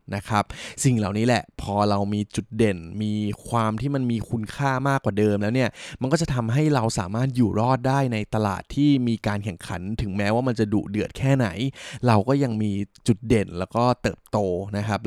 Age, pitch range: 20-39, 105-125 Hz